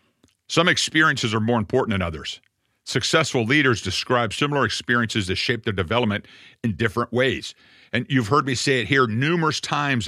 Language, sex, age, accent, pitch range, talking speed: English, male, 50-69, American, 115-145 Hz, 165 wpm